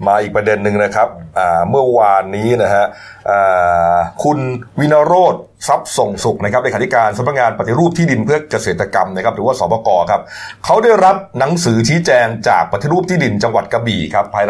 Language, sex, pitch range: Thai, male, 105-160 Hz